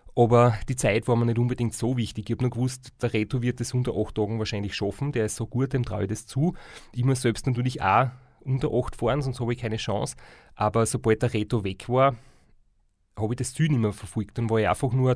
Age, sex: 30-49, male